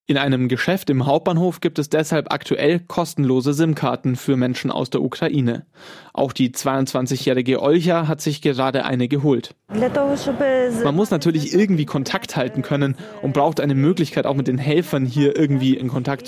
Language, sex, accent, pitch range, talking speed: German, male, German, 135-165 Hz, 160 wpm